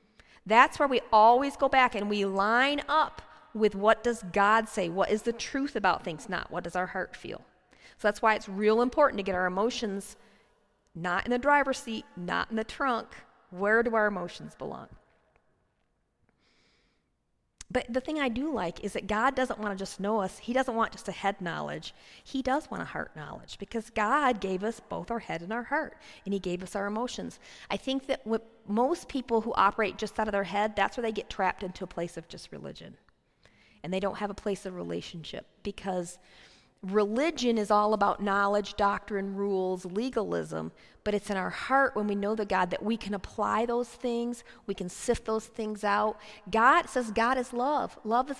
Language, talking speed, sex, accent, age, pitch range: English, 205 wpm, female, American, 40-59, 190-240 Hz